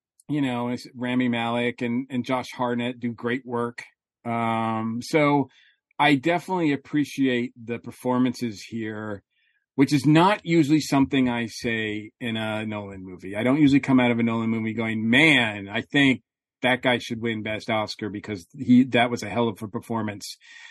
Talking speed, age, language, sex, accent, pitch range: 170 wpm, 40-59, English, male, American, 120-150 Hz